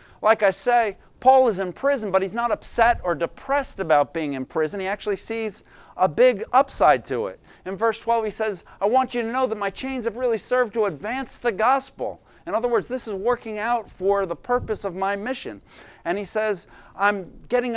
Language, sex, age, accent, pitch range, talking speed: English, male, 50-69, American, 160-225 Hz, 215 wpm